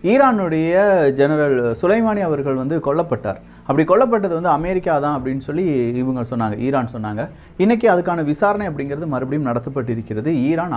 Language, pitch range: Tamil, 120-160 Hz